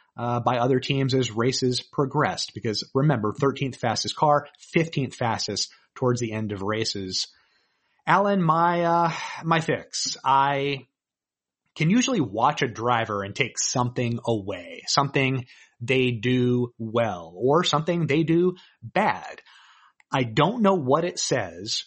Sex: male